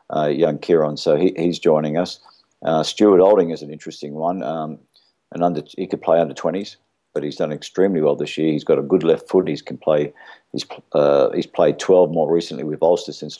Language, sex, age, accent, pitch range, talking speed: English, male, 50-69, Australian, 80-90 Hz, 225 wpm